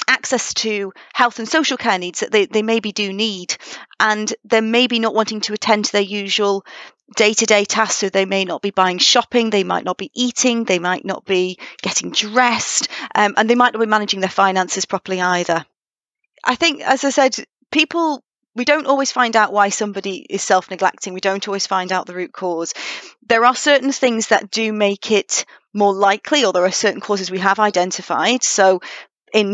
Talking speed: 195 wpm